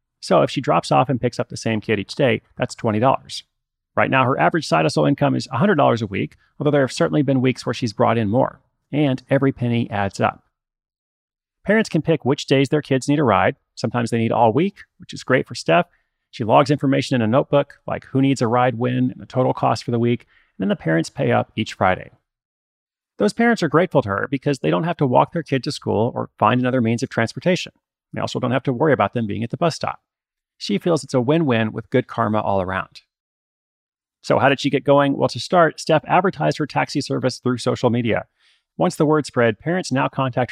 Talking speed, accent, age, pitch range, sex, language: 235 wpm, American, 30-49, 115-150 Hz, male, English